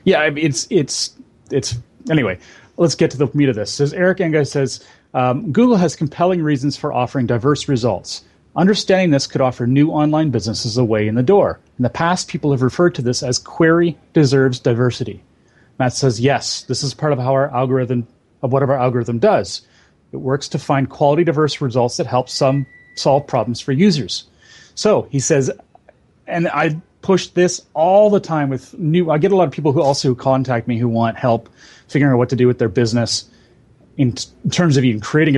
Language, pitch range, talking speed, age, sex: English, 125-150 Hz, 200 wpm, 30-49, male